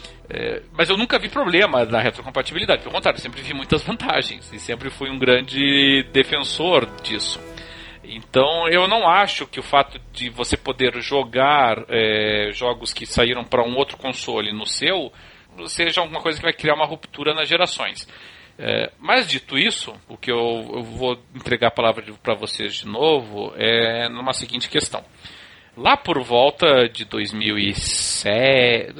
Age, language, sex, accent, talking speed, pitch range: 40-59, Portuguese, male, Brazilian, 160 wpm, 115-150 Hz